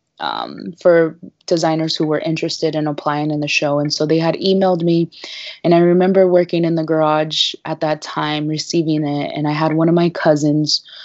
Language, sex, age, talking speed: English, female, 20-39, 195 wpm